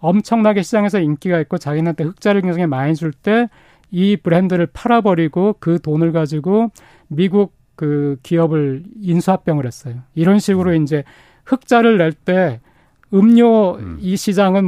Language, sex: Korean, male